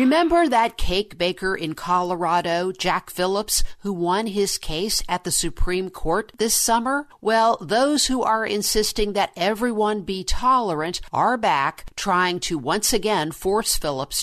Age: 50-69